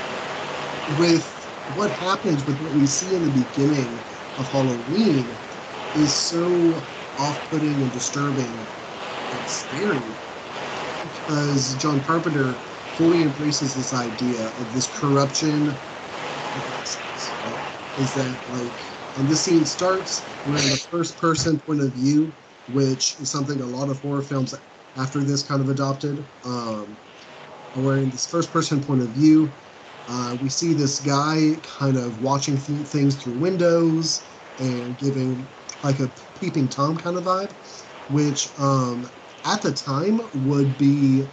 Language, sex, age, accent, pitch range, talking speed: English, male, 30-49, American, 130-150 Hz, 130 wpm